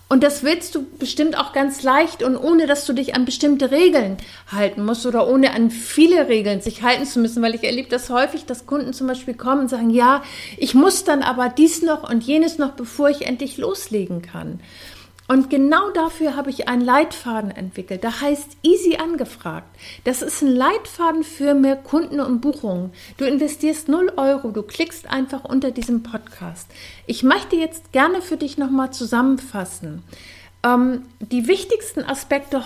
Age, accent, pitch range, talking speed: 50-69, German, 230-290 Hz, 180 wpm